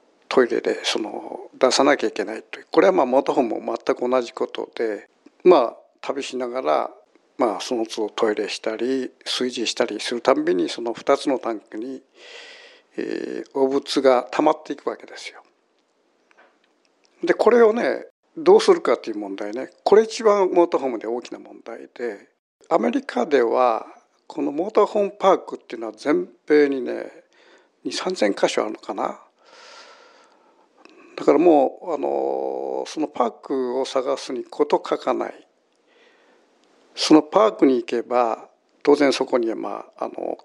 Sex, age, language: male, 60-79, Japanese